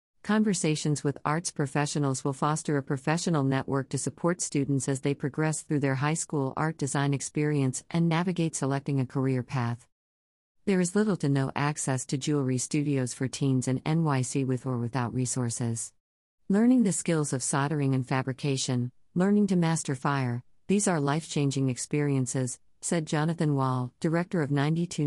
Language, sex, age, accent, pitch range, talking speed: English, female, 50-69, American, 130-155 Hz, 160 wpm